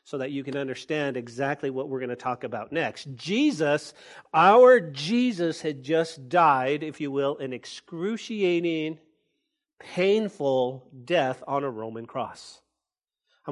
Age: 40-59